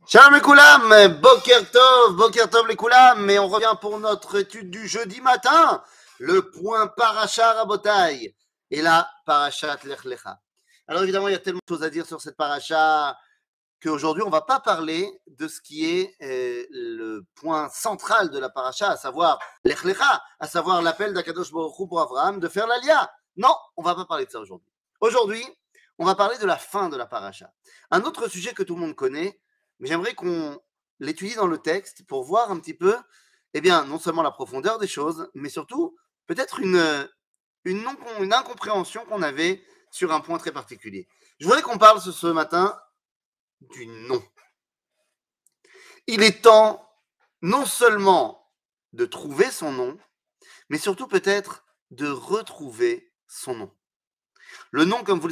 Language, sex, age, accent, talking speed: French, male, 30-49, French, 165 wpm